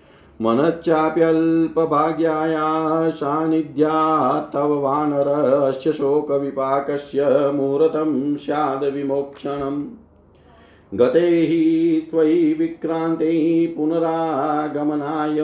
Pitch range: 145-160 Hz